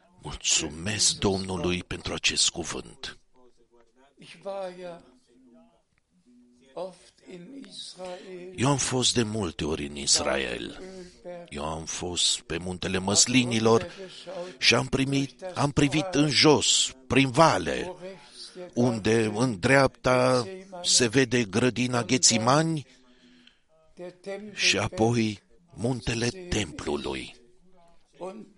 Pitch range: 120-180 Hz